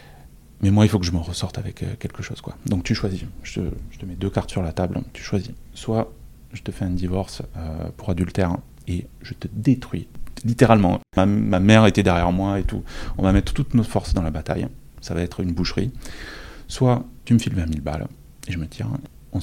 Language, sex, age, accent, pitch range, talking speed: French, male, 30-49, French, 85-110 Hz, 230 wpm